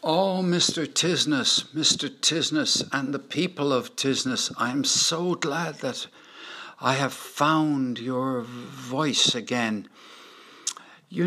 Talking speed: 115 wpm